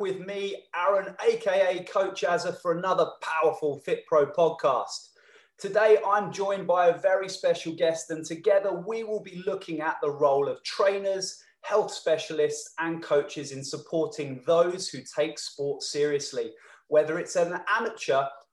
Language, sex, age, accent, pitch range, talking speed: English, male, 30-49, British, 165-225 Hz, 145 wpm